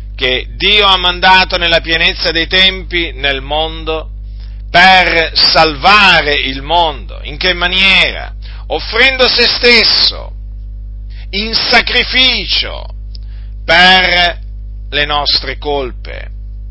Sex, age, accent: male, 50-69, native